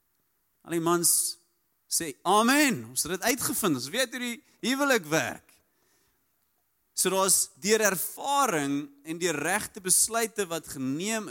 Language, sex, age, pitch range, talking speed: English, male, 30-49, 160-215 Hz, 120 wpm